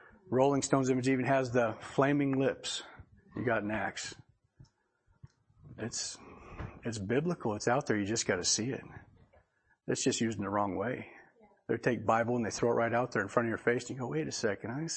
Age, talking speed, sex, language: 40-59, 210 wpm, male, English